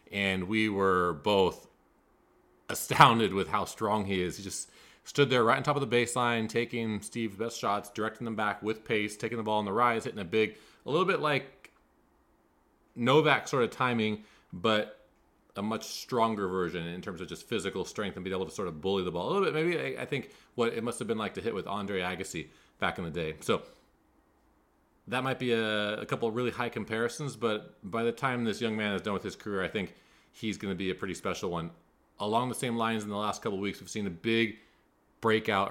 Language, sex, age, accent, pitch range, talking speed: English, male, 30-49, American, 95-115 Hz, 225 wpm